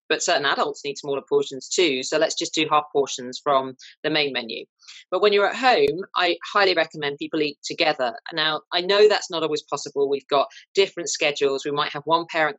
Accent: British